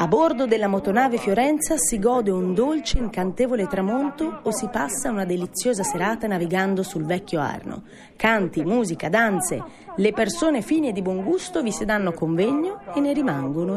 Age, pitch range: 30-49, 185-245 Hz